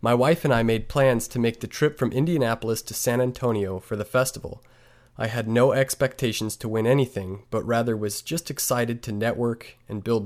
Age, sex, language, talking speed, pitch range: 20-39, male, English, 200 wpm, 110-130 Hz